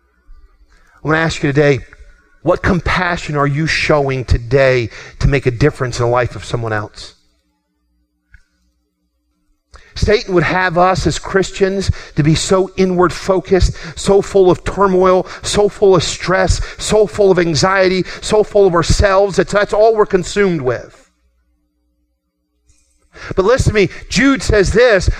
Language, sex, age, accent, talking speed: English, male, 40-59, American, 145 wpm